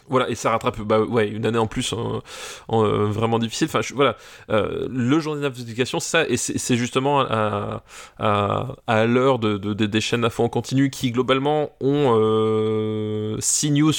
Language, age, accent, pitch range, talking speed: French, 20-39, French, 110-135 Hz, 195 wpm